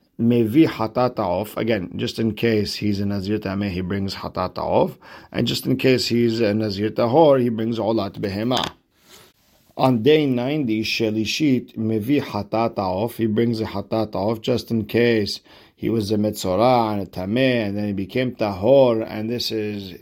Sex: male